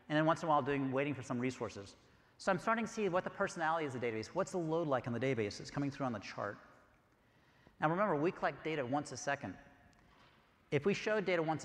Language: English